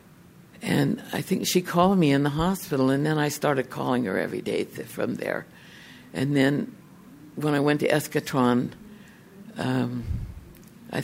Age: 60-79